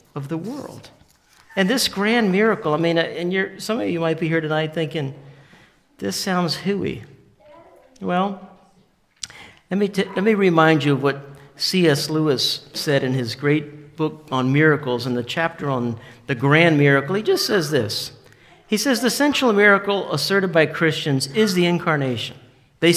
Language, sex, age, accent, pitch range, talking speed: English, male, 50-69, American, 145-200 Hz, 160 wpm